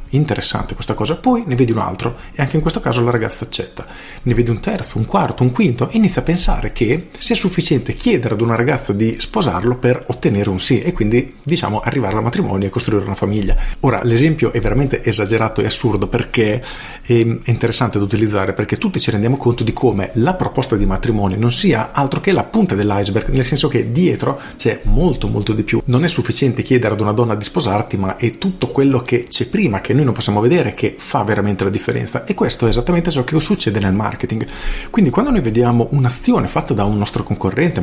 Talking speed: 215 wpm